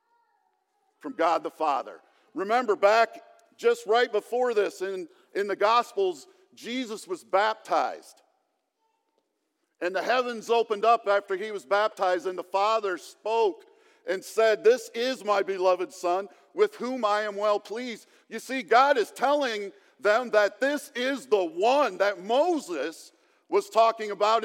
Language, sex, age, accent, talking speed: English, male, 50-69, American, 145 wpm